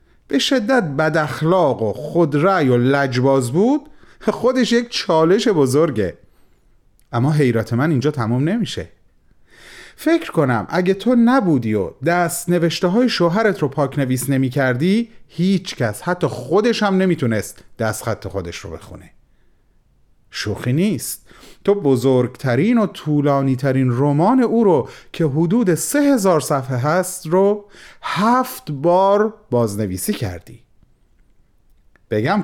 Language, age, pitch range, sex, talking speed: Persian, 30-49, 115-185 Hz, male, 120 wpm